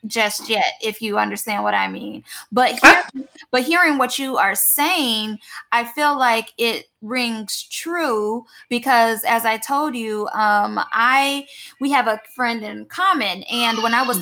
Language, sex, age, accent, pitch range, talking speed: English, female, 10-29, American, 210-260 Hz, 160 wpm